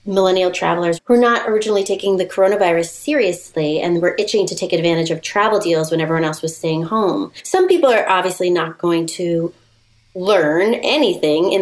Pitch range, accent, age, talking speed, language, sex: 165-205 Hz, American, 30-49, 180 wpm, English, female